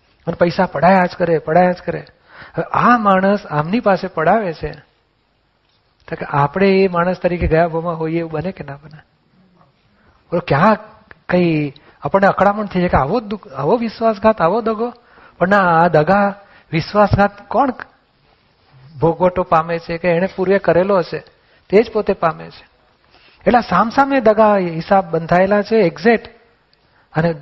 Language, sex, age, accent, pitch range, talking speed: Gujarati, male, 40-59, native, 170-205 Hz, 150 wpm